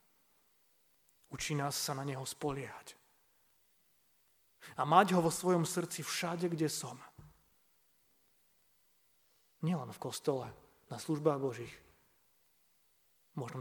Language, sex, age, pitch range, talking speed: Slovak, male, 30-49, 110-155 Hz, 95 wpm